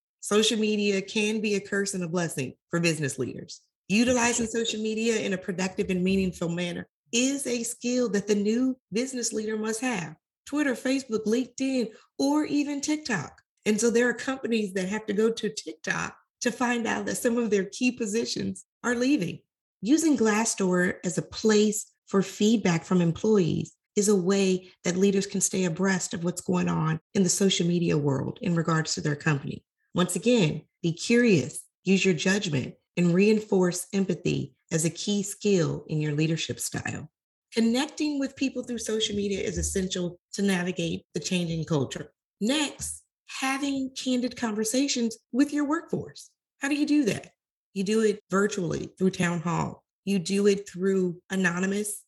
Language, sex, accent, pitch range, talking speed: English, female, American, 180-235 Hz, 165 wpm